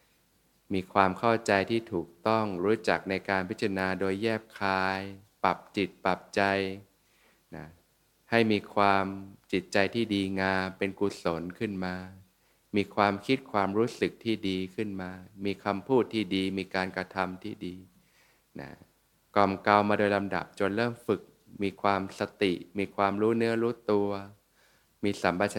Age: 20-39